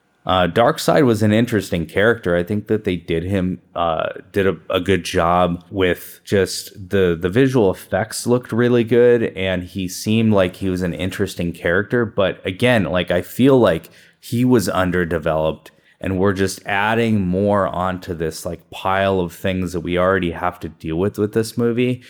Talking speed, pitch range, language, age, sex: 180 wpm, 90-115 Hz, English, 20-39, male